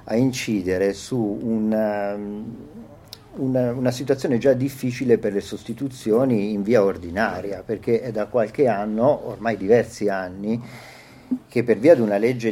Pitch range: 95-120 Hz